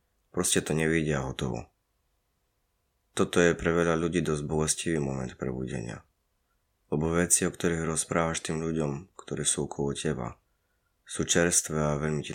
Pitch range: 75-85 Hz